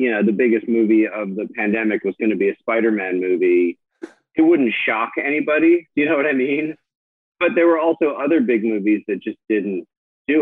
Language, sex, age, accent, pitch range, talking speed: English, male, 40-59, American, 110-145 Hz, 200 wpm